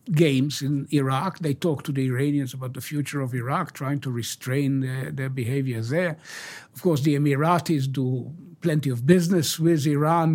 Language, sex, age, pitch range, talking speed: English, male, 60-79, 130-155 Hz, 175 wpm